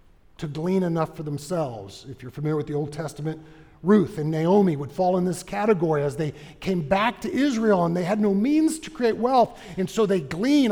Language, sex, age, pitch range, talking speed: English, male, 50-69, 135-190 Hz, 215 wpm